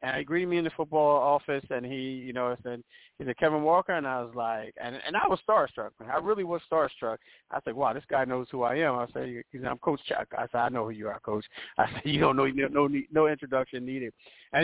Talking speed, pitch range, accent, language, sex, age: 265 wpm, 125-145 Hz, American, English, male, 40-59